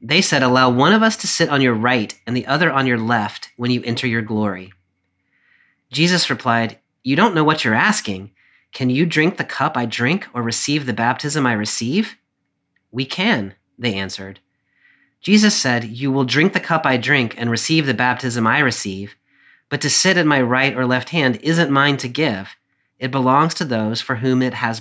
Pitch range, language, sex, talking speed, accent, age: 110-140 Hz, English, male, 200 wpm, American, 40-59